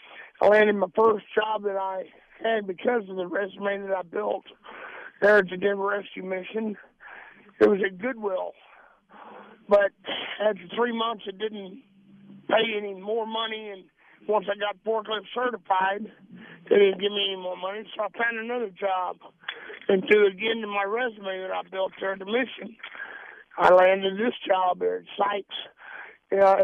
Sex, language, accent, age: male, English, American, 50-69